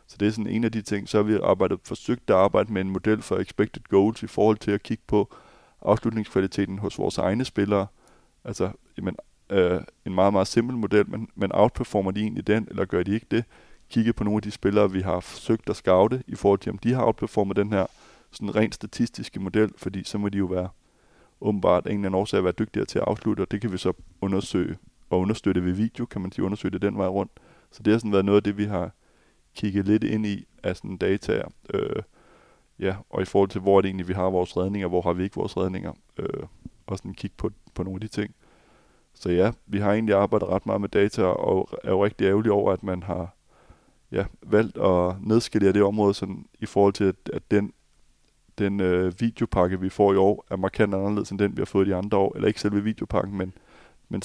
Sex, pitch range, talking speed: male, 95-105 Hz, 230 wpm